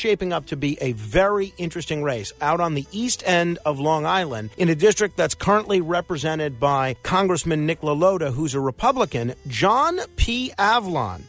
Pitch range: 145-195 Hz